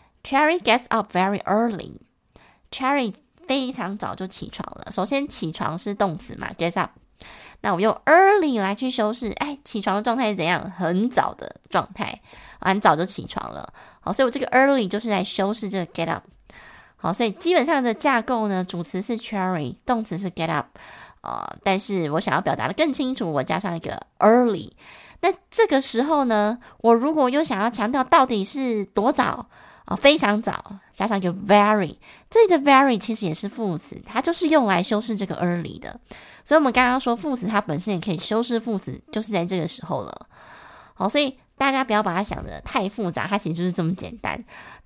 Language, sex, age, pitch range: Chinese, female, 20-39, 190-255 Hz